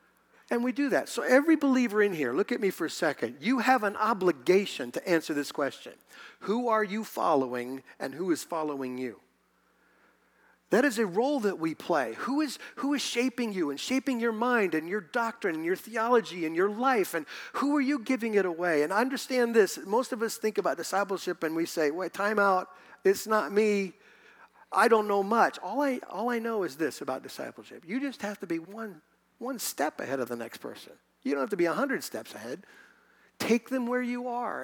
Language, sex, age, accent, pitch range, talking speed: English, male, 50-69, American, 165-240 Hz, 215 wpm